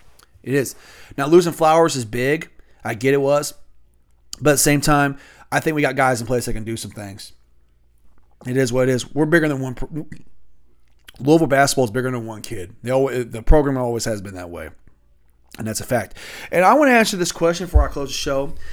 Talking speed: 215 wpm